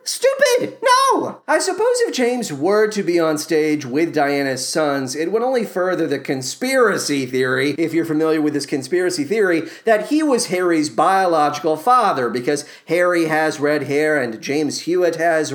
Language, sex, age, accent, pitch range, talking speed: English, male, 40-59, American, 140-230 Hz, 165 wpm